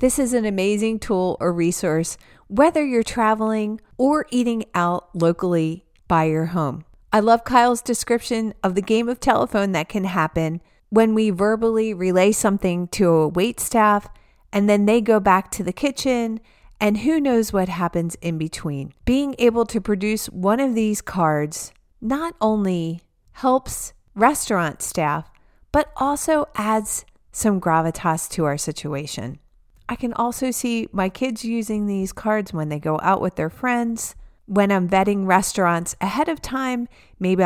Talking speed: 155 wpm